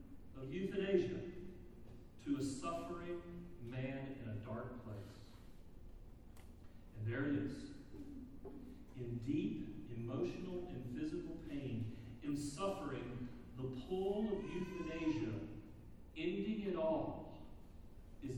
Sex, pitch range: male, 105-150 Hz